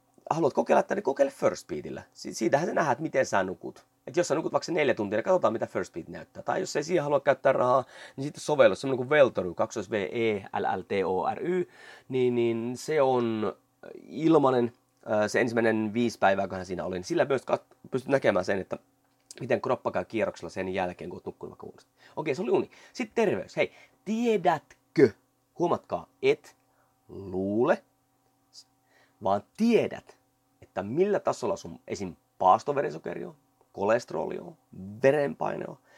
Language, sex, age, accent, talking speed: Finnish, male, 30-49, native, 145 wpm